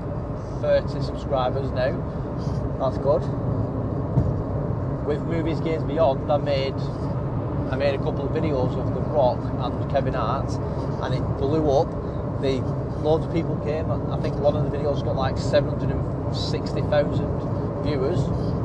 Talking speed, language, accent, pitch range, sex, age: 150 wpm, English, British, 130-145 Hz, male, 30-49